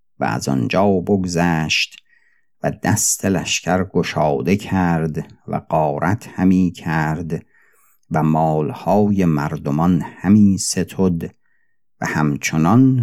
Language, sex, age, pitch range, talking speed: Persian, male, 50-69, 80-95 Hz, 90 wpm